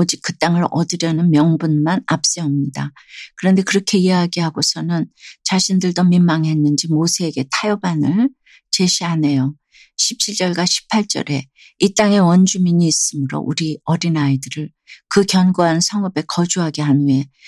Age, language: 60-79, Korean